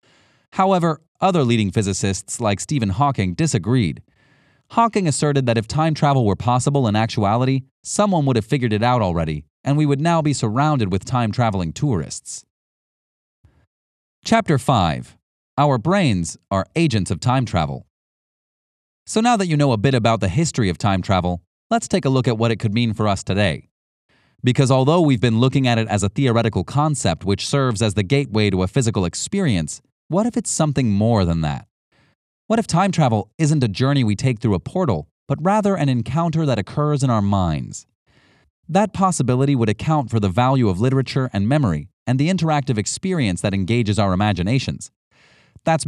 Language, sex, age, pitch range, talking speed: English, male, 30-49, 105-145 Hz, 180 wpm